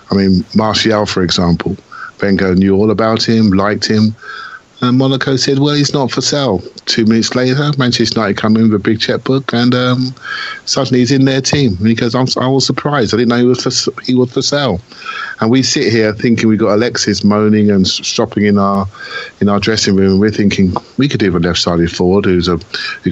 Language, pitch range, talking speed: English, 95-125 Hz, 215 wpm